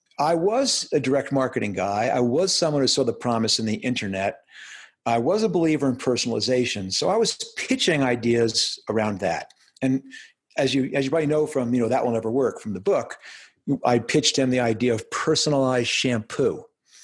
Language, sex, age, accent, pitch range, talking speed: English, male, 50-69, American, 115-135 Hz, 190 wpm